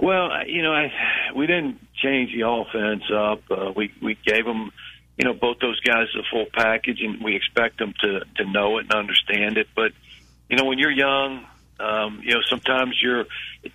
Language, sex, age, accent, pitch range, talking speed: English, male, 50-69, American, 105-125 Hz, 200 wpm